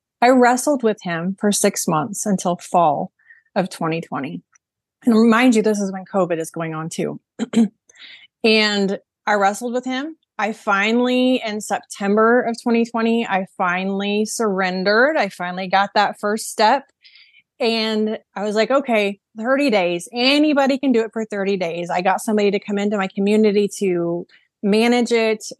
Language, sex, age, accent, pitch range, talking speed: English, female, 30-49, American, 190-245 Hz, 155 wpm